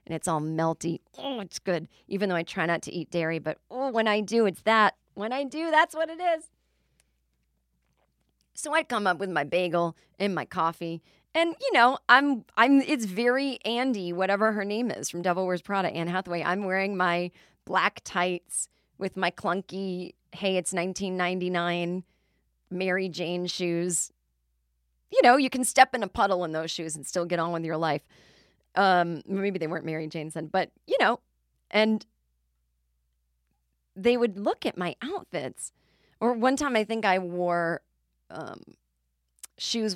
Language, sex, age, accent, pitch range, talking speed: English, female, 30-49, American, 160-210 Hz, 175 wpm